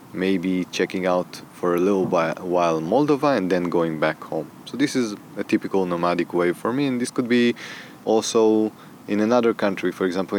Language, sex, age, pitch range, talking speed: English, male, 20-39, 95-110 Hz, 185 wpm